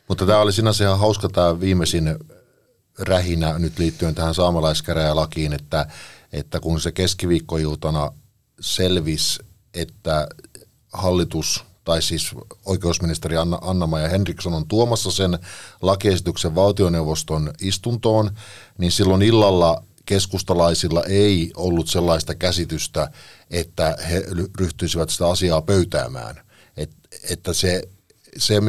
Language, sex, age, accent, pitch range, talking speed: Finnish, male, 50-69, native, 80-100 Hz, 105 wpm